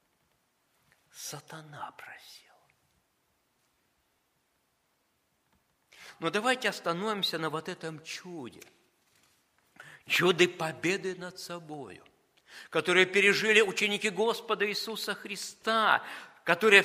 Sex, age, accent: male, 50-69, native